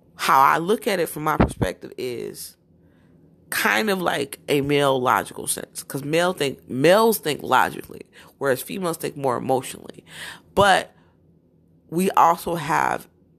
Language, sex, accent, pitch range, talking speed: English, female, American, 140-195 Hz, 140 wpm